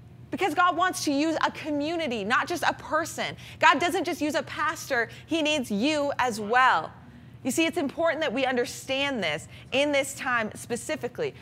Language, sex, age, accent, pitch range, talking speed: English, female, 20-39, American, 235-305 Hz, 180 wpm